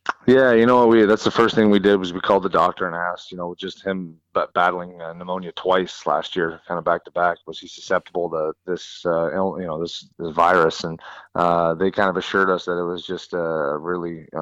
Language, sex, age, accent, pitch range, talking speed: English, male, 30-49, American, 85-95 Hz, 235 wpm